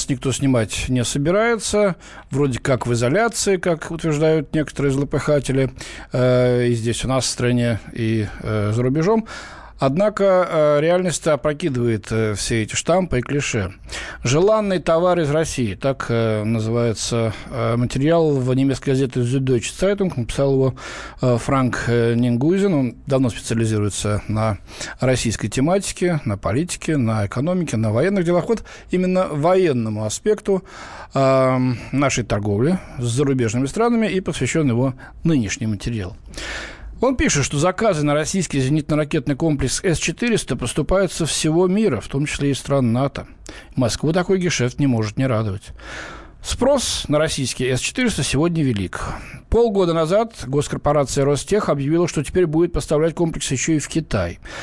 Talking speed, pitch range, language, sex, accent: 135 wpm, 120-170 Hz, Russian, male, native